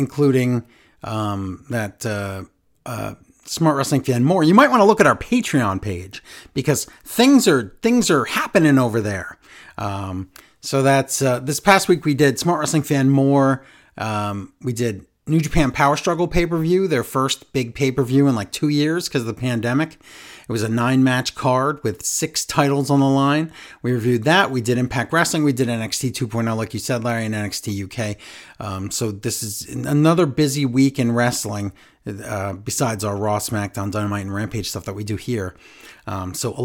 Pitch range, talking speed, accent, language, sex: 115-155 Hz, 190 wpm, American, English, male